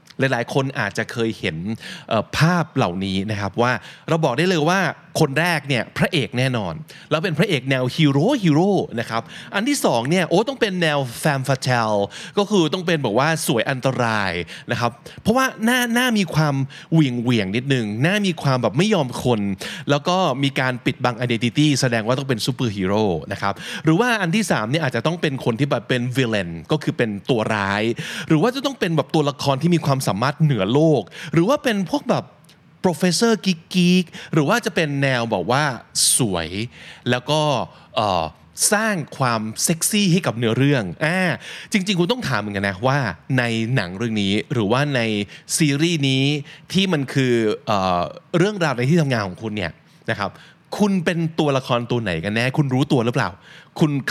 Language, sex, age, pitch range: Thai, male, 20-39, 120-170 Hz